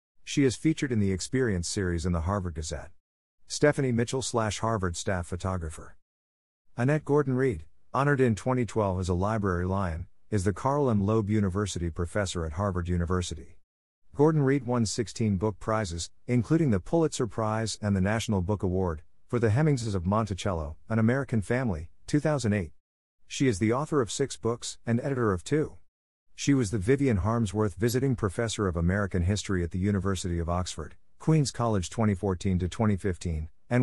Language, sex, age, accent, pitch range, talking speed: English, male, 50-69, American, 90-120 Hz, 160 wpm